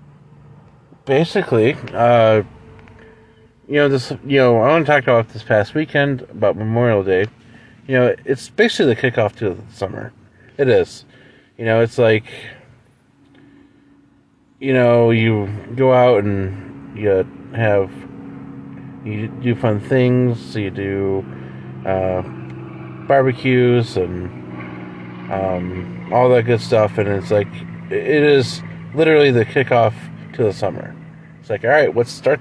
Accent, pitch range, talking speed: American, 100-130 Hz, 130 wpm